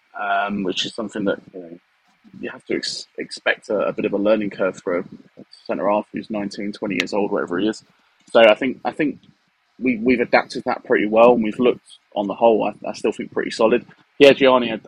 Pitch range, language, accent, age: 105-115 Hz, English, British, 20-39